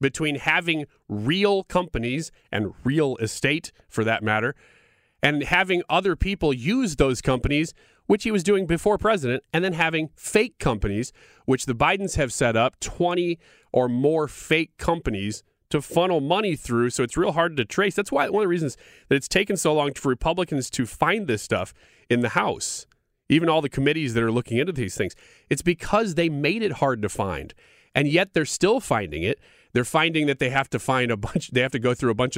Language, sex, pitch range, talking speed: English, male, 120-165 Hz, 200 wpm